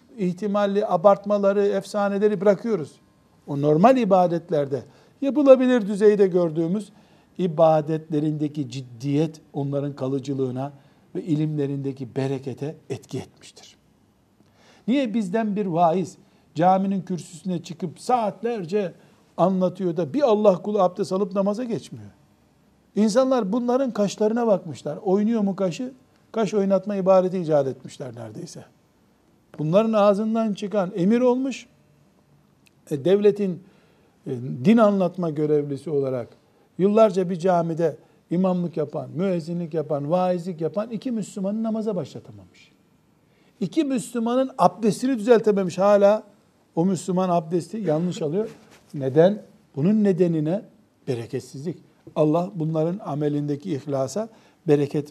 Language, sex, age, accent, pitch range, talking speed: Turkish, male, 60-79, native, 155-210 Hz, 100 wpm